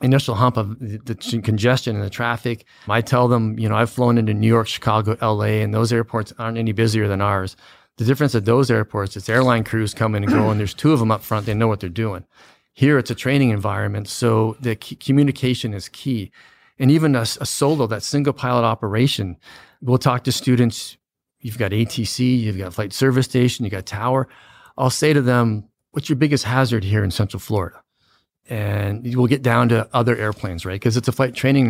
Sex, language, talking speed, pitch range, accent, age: male, English, 210 wpm, 110-130 Hz, American, 40-59